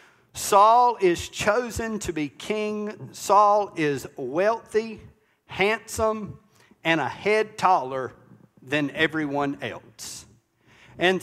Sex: male